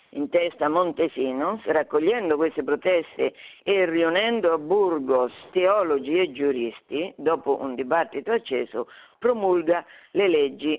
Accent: native